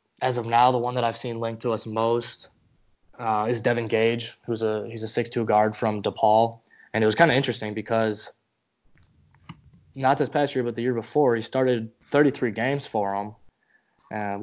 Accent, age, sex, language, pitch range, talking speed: American, 20-39, male, English, 105-120 Hz, 190 wpm